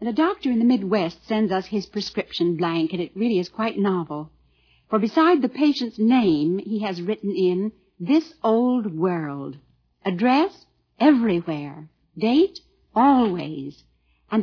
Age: 60-79